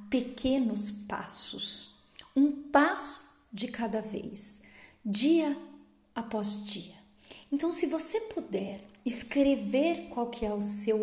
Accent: Brazilian